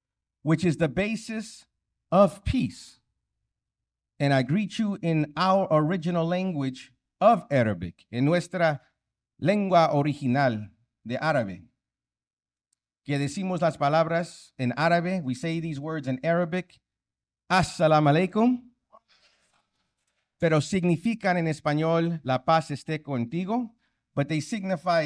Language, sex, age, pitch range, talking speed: English, male, 50-69, 135-185 Hz, 115 wpm